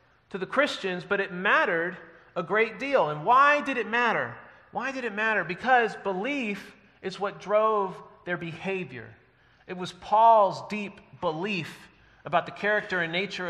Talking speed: 155 wpm